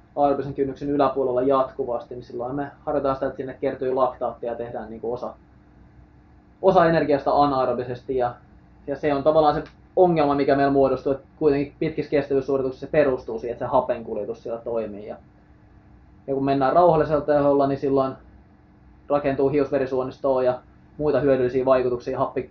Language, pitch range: Finnish, 125-145 Hz